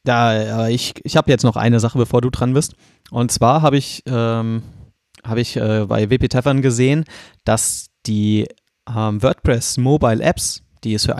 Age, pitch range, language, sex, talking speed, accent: 30-49, 110-135 Hz, German, male, 180 wpm, German